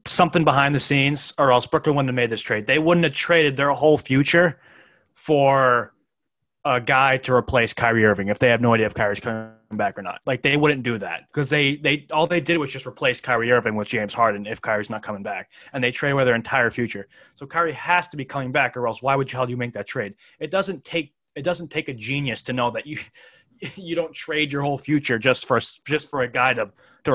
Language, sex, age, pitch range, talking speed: English, male, 20-39, 115-150 Hz, 245 wpm